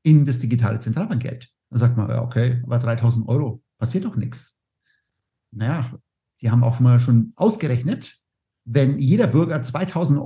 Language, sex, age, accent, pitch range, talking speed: German, male, 50-69, German, 115-135 Hz, 145 wpm